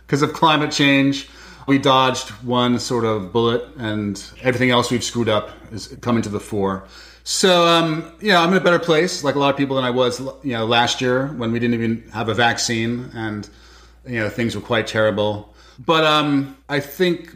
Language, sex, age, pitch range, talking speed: English, male, 30-49, 110-135 Hz, 205 wpm